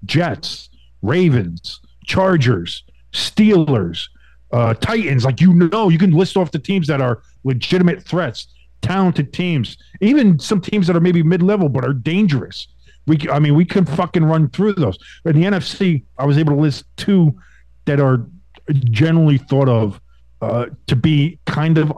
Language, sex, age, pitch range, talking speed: English, male, 50-69, 120-175 Hz, 160 wpm